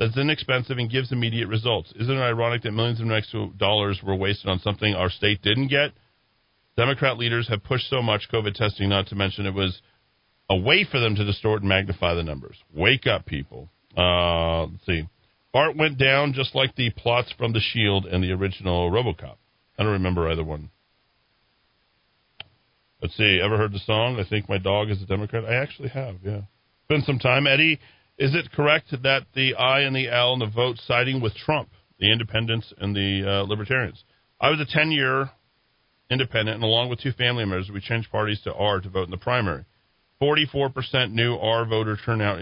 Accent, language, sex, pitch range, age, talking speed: American, English, male, 100-130 Hz, 40-59, 195 wpm